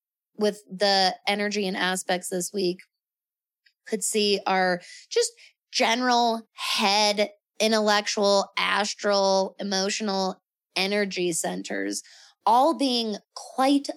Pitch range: 195-245 Hz